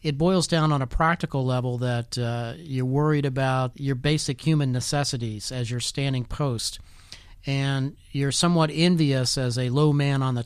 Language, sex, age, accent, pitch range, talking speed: English, male, 40-59, American, 120-150 Hz, 170 wpm